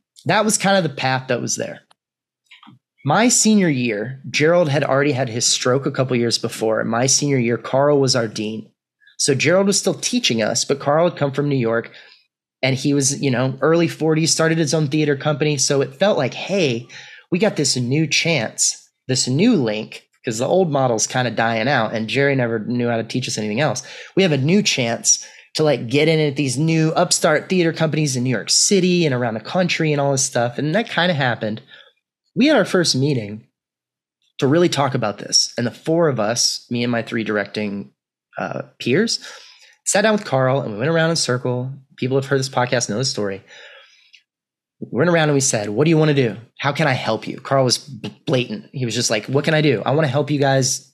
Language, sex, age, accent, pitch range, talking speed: English, male, 30-49, American, 120-160 Hz, 225 wpm